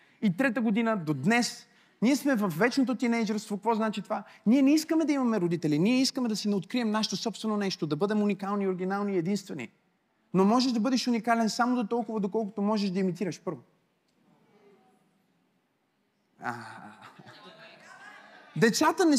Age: 30-49